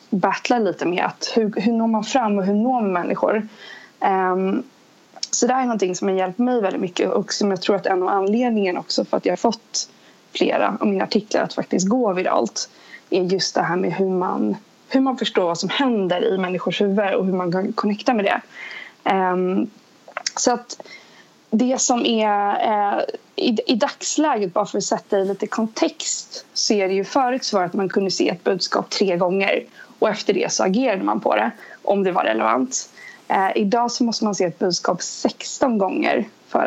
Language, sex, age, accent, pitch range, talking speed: Swedish, female, 20-39, native, 190-230 Hz, 205 wpm